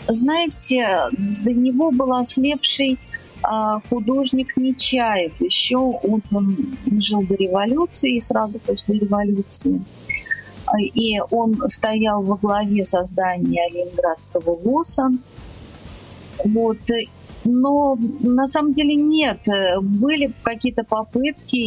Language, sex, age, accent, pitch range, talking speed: Russian, female, 30-49, native, 210-260 Hz, 90 wpm